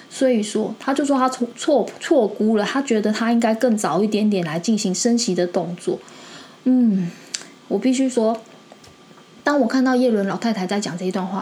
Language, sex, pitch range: Chinese, female, 195-240 Hz